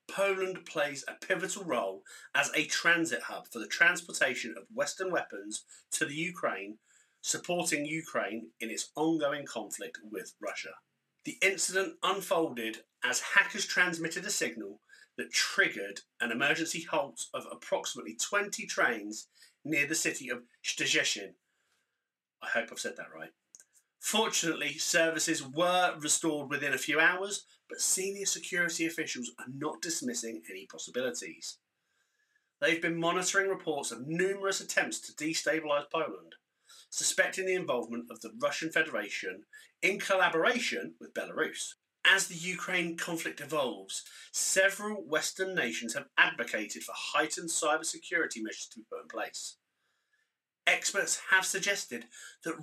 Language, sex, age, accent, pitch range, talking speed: English, male, 30-49, British, 155-195 Hz, 130 wpm